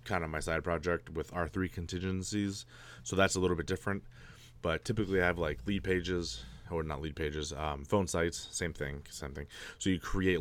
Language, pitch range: English, 80-95 Hz